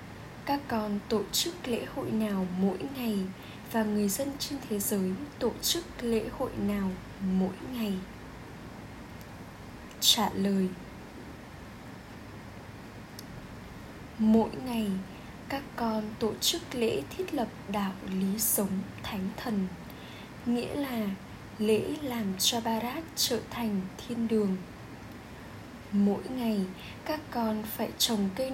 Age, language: 10-29, Vietnamese